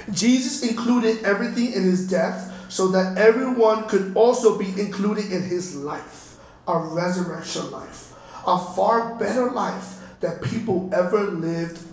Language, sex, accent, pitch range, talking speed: English, male, American, 200-260 Hz, 135 wpm